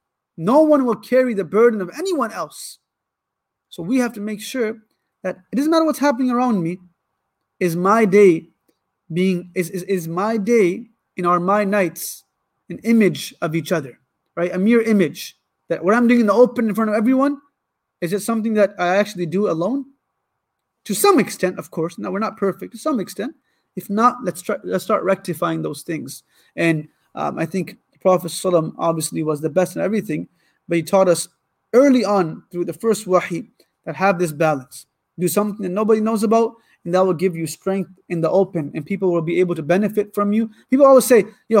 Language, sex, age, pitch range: English, male, 30-49, 175-225 Hz